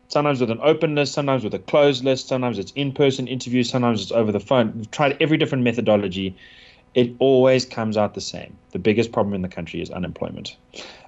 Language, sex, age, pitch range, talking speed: English, male, 30-49, 100-130 Hz, 205 wpm